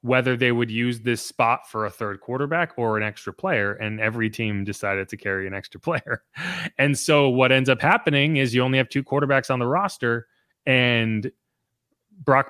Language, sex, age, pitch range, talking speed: English, male, 30-49, 115-145 Hz, 190 wpm